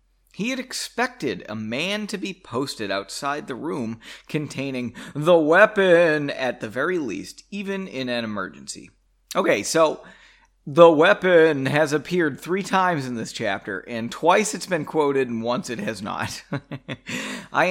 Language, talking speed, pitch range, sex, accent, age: English, 150 wpm, 130-210 Hz, male, American, 30-49